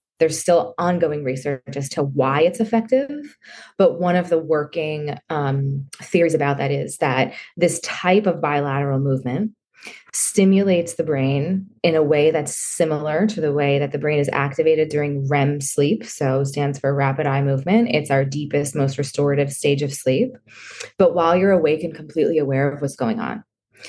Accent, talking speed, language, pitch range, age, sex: American, 175 wpm, English, 140-165 Hz, 20-39, female